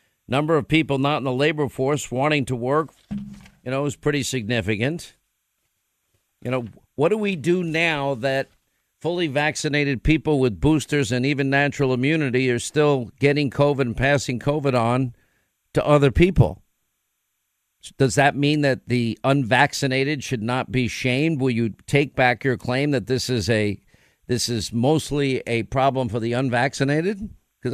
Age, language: 50-69, English